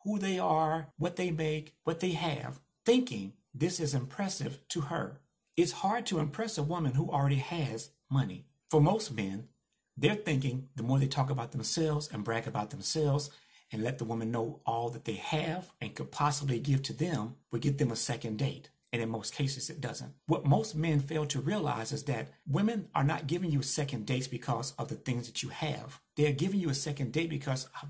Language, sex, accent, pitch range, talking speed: English, male, American, 120-155 Hz, 210 wpm